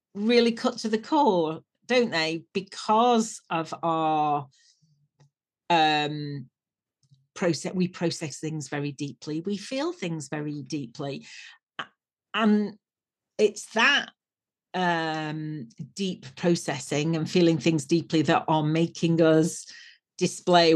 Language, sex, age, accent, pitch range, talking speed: English, female, 40-59, British, 155-205 Hz, 105 wpm